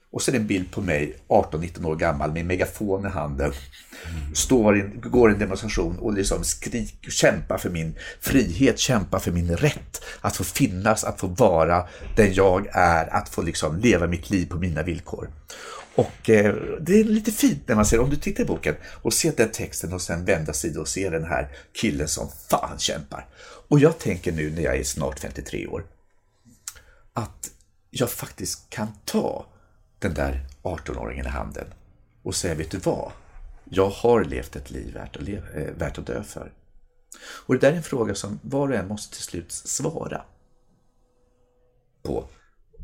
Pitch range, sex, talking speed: 80-110 Hz, male, 180 wpm